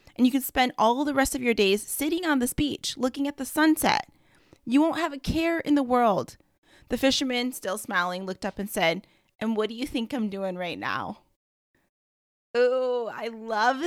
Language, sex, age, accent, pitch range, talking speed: English, female, 20-39, American, 195-270 Hz, 200 wpm